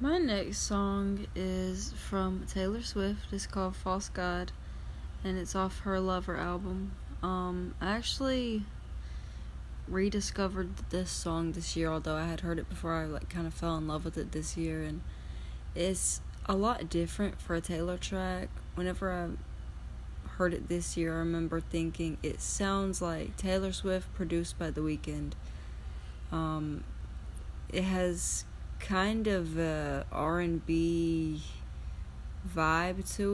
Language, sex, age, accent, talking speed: English, female, 20-39, American, 135 wpm